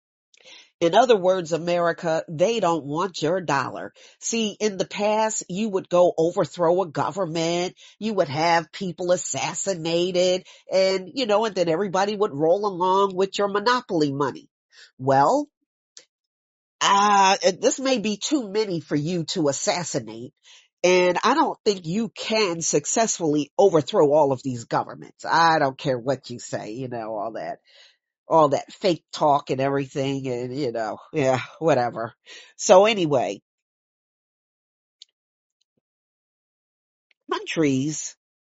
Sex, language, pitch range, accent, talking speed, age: female, English, 145-200 Hz, American, 130 wpm, 40-59